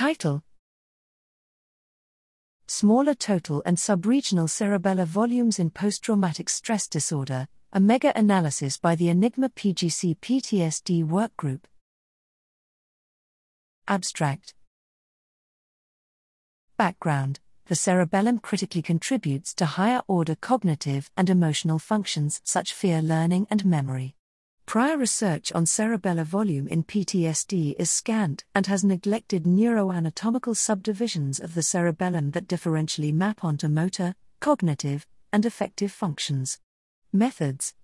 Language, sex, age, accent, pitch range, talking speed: English, female, 50-69, British, 160-215 Hz, 100 wpm